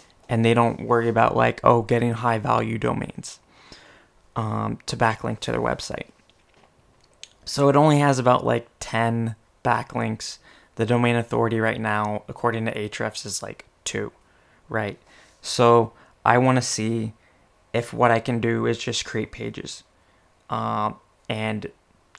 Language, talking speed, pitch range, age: English, 140 wpm, 105-120 Hz, 20-39